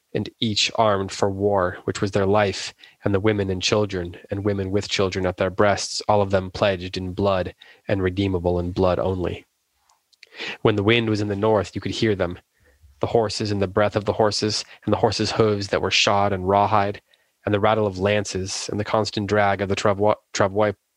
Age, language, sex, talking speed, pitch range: 20-39, English, male, 205 wpm, 95-105 Hz